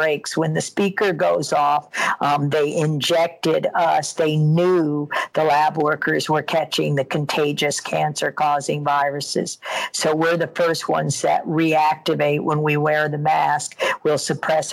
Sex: female